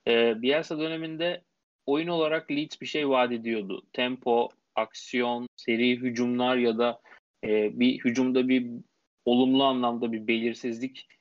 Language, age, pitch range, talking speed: Turkish, 30-49, 115-145 Hz, 120 wpm